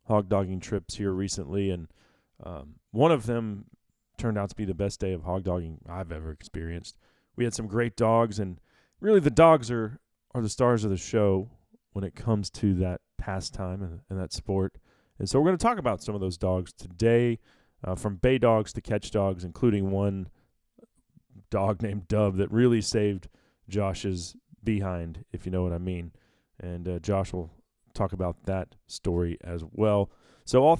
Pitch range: 95-115 Hz